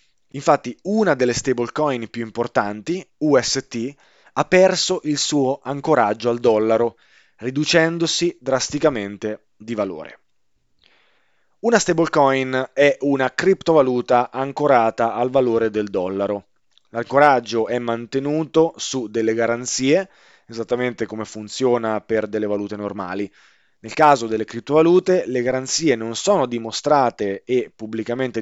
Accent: native